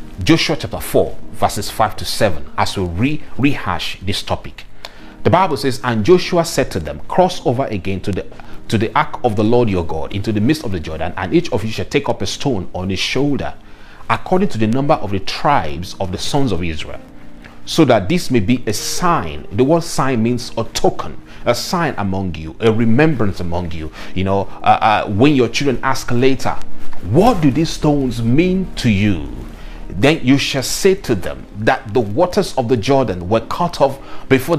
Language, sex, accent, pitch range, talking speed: English, male, Nigerian, 95-140 Hz, 200 wpm